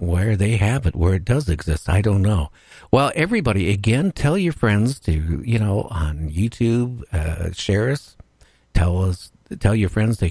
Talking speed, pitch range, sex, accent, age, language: 180 wpm, 90-120 Hz, male, American, 60-79, English